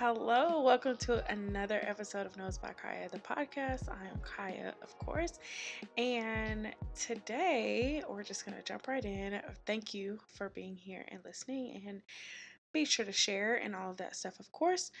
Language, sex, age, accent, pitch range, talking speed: English, female, 20-39, American, 200-265 Hz, 175 wpm